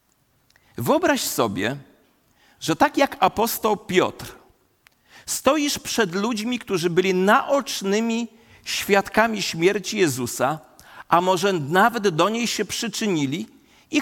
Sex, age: male, 40-59